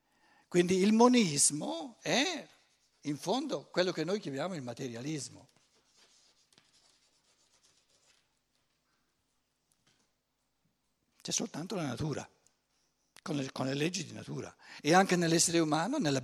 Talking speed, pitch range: 100 wpm, 135-195 Hz